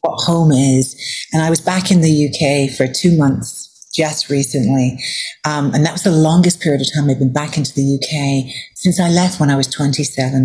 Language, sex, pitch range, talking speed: English, female, 135-165 Hz, 220 wpm